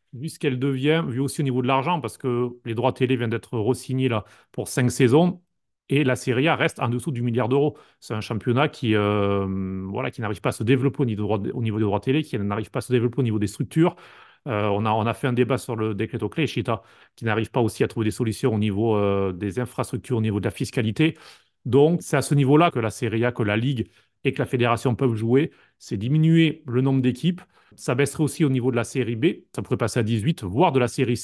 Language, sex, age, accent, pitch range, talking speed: French, male, 30-49, French, 115-140 Hz, 260 wpm